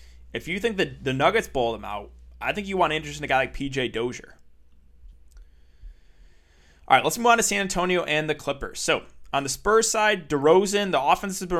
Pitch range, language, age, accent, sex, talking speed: 120-160 Hz, English, 20-39, American, male, 210 wpm